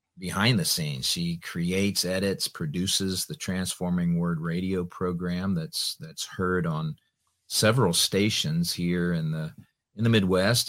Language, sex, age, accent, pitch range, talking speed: English, male, 50-69, American, 85-135 Hz, 135 wpm